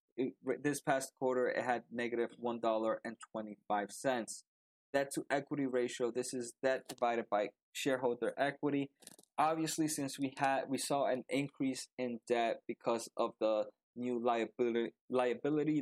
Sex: male